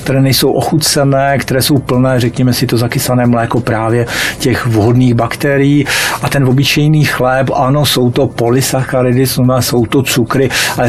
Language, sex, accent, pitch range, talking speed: Czech, male, native, 125-145 Hz, 155 wpm